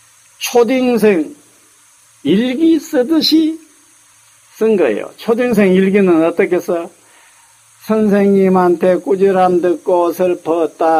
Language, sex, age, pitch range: Korean, male, 50-69, 155-230 Hz